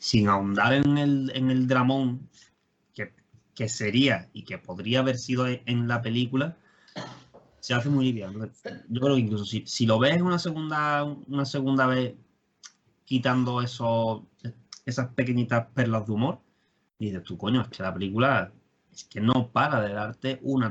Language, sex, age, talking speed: Spanish, male, 20-39, 160 wpm